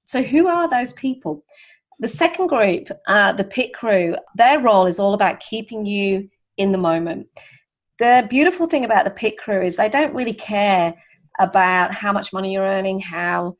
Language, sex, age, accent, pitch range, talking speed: English, female, 30-49, British, 185-225 Hz, 180 wpm